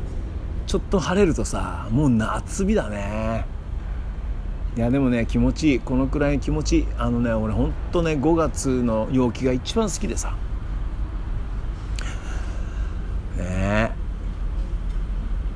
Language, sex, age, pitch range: Japanese, male, 60-79, 85-120 Hz